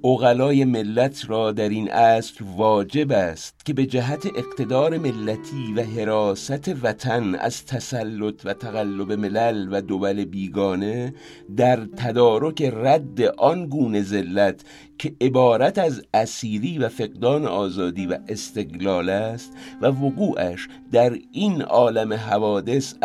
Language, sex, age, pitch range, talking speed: English, male, 50-69, 105-135 Hz, 120 wpm